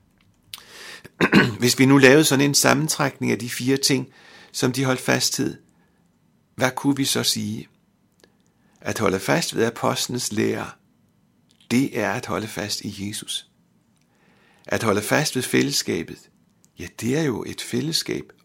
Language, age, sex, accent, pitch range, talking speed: Danish, 60-79, male, native, 115-140 Hz, 145 wpm